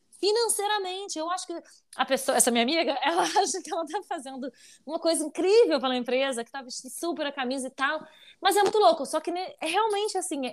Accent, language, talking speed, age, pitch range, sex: Brazilian, Portuguese, 200 wpm, 20-39, 260-360 Hz, female